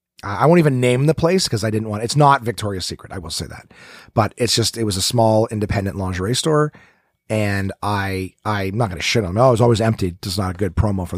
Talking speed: 260 wpm